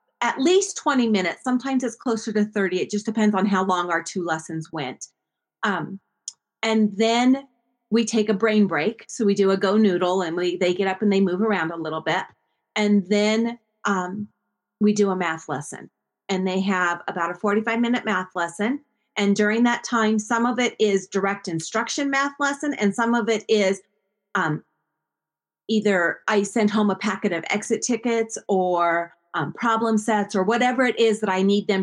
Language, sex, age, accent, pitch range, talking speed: English, female, 30-49, American, 190-225 Hz, 185 wpm